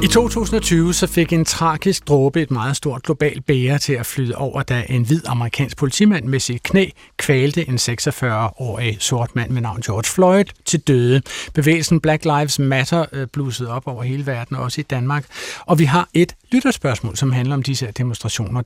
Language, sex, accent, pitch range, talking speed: Danish, male, native, 125-160 Hz, 180 wpm